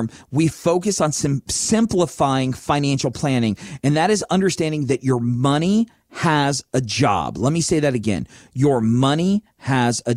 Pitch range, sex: 125-170 Hz, male